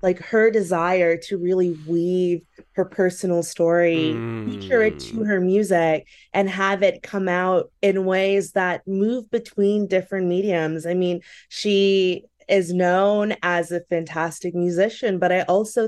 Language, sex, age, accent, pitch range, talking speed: English, female, 20-39, American, 165-195 Hz, 145 wpm